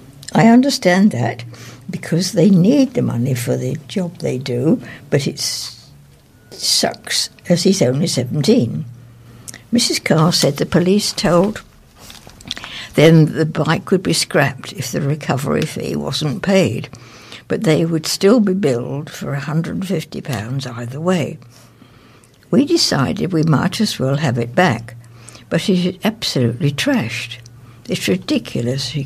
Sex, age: female, 60-79